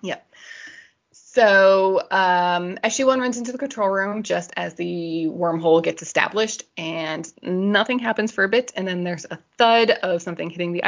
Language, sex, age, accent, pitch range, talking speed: English, female, 20-39, American, 165-220 Hz, 165 wpm